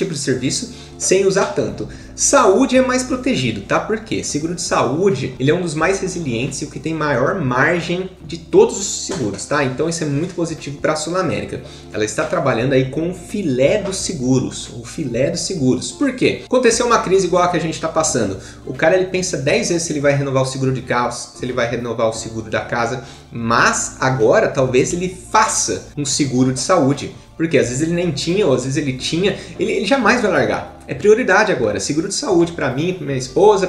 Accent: Brazilian